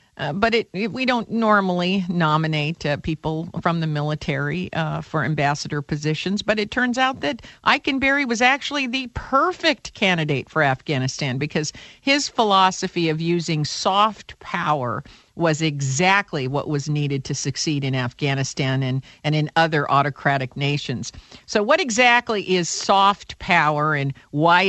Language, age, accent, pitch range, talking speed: English, 50-69, American, 145-205 Hz, 140 wpm